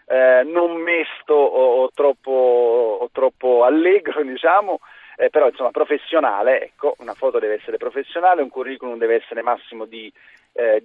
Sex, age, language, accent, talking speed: male, 40-59, Italian, native, 150 wpm